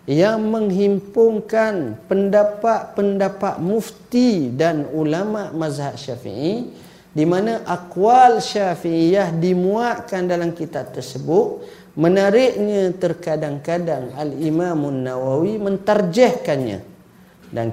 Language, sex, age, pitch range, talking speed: Malay, male, 40-59, 150-210 Hz, 75 wpm